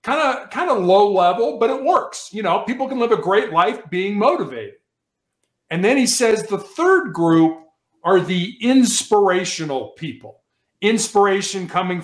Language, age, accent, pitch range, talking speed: English, 50-69, American, 160-210 Hz, 160 wpm